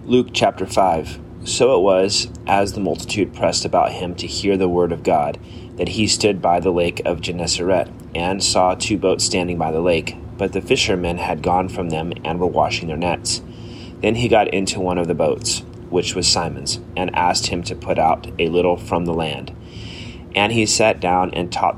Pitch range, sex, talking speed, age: 85-105 Hz, male, 205 wpm, 30-49